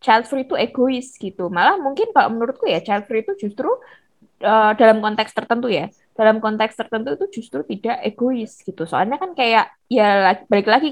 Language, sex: Indonesian, female